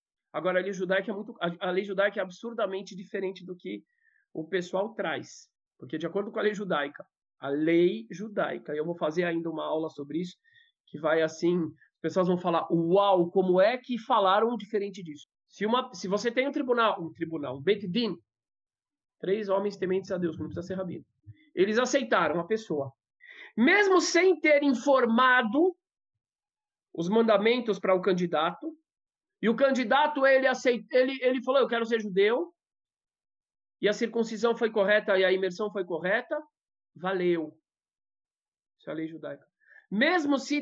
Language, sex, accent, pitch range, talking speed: Portuguese, male, Brazilian, 170-250 Hz, 170 wpm